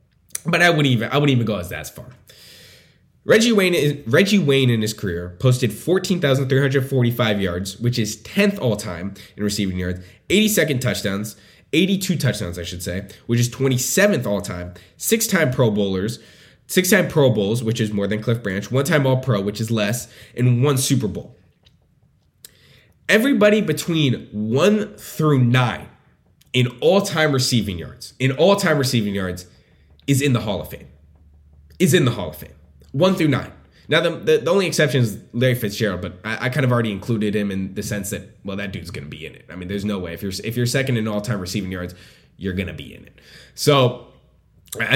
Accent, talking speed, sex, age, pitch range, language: American, 200 wpm, male, 20-39, 100-145 Hz, English